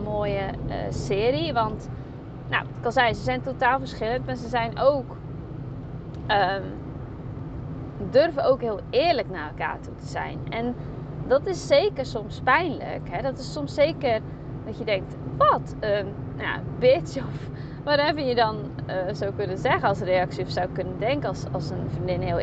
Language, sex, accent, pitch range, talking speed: Dutch, female, Dutch, 130-145 Hz, 175 wpm